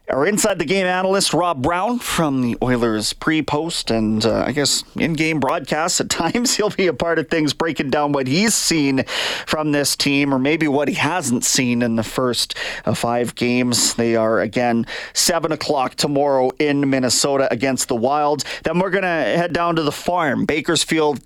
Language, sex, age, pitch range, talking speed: English, male, 30-49, 120-160 Hz, 180 wpm